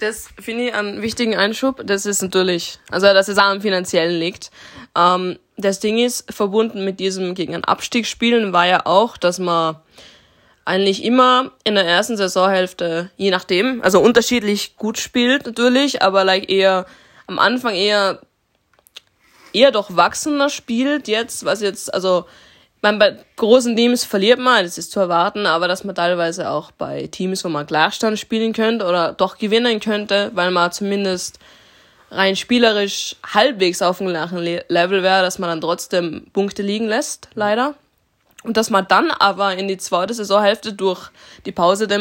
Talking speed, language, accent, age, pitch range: 165 wpm, German, German, 20-39, 185-220 Hz